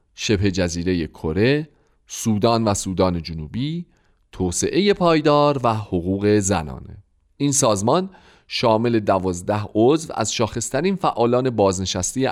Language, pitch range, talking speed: Persian, 95-145 Hz, 100 wpm